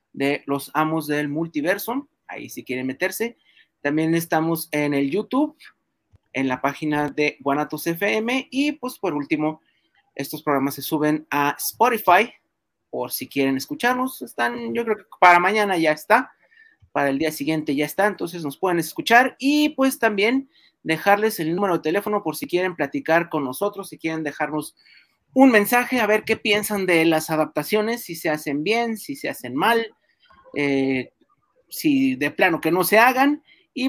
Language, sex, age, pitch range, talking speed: Spanish, male, 30-49, 150-230 Hz, 170 wpm